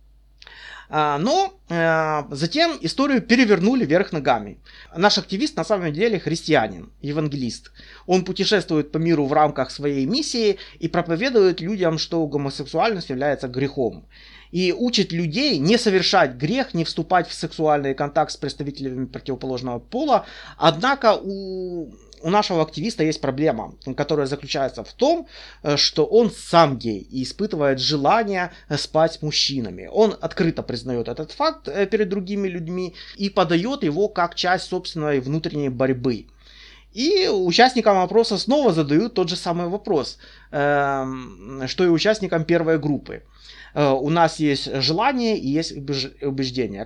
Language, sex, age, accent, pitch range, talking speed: Russian, male, 30-49, native, 145-195 Hz, 130 wpm